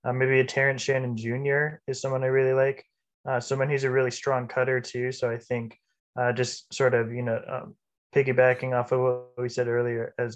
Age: 20-39